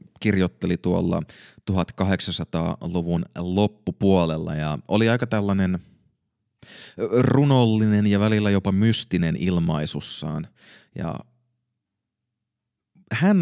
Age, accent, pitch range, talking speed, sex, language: 30-49, native, 85-110 Hz, 70 wpm, male, Finnish